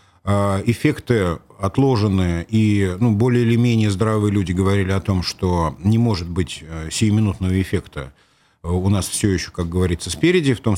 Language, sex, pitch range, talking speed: Russian, male, 90-110 Hz, 150 wpm